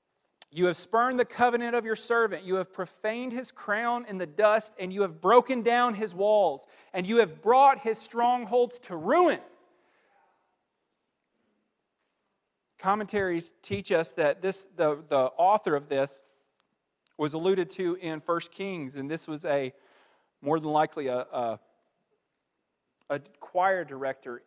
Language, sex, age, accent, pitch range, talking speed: English, male, 40-59, American, 140-215 Hz, 145 wpm